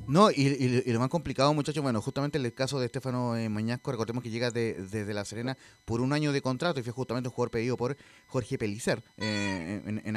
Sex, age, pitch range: male, 30-49, 120-160 Hz